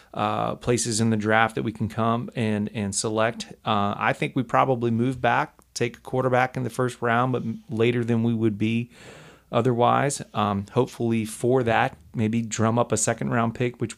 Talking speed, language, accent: 190 wpm, English, American